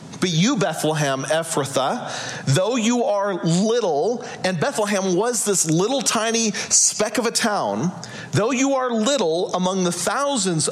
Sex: male